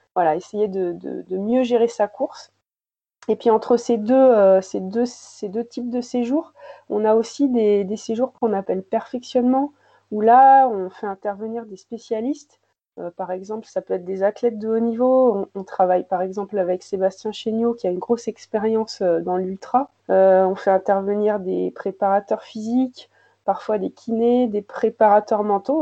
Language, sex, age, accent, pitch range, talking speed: French, female, 20-39, French, 195-240 Hz, 165 wpm